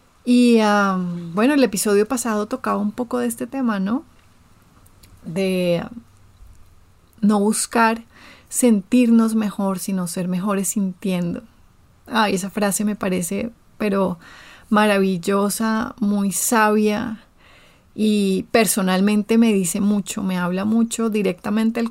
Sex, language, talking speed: female, Spanish, 120 wpm